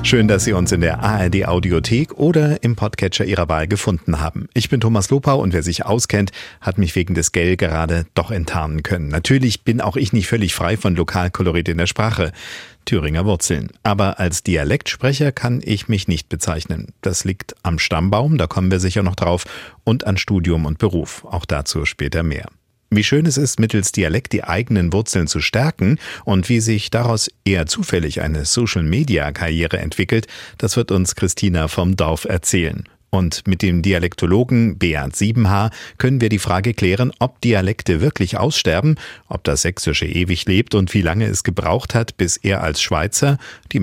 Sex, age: male, 50-69